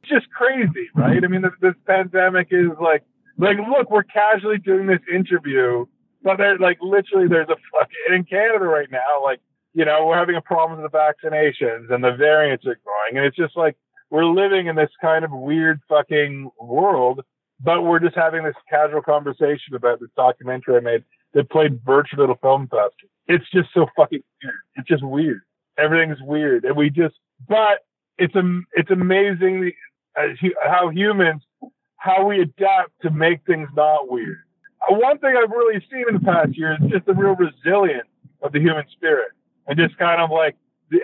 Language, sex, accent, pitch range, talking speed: English, male, American, 150-200 Hz, 190 wpm